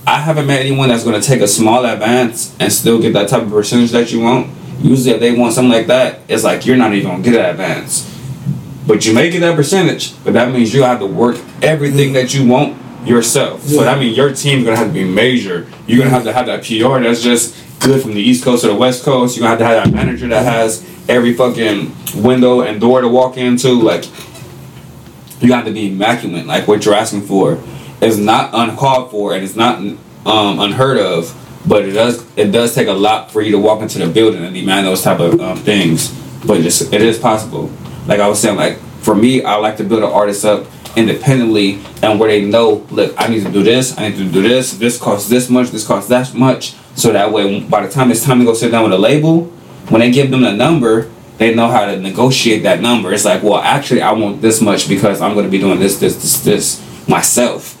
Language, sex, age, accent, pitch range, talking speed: English, male, 20-39, American, 105-130 Hz, 245 wpm